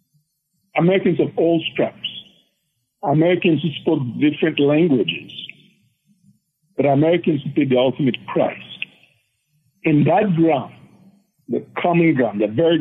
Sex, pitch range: male, 135-185 Hz